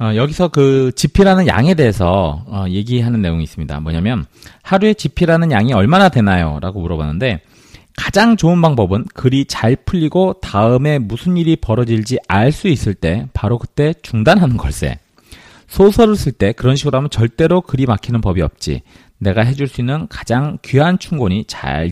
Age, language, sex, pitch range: 40-59, Korean, male, 100-155 Hz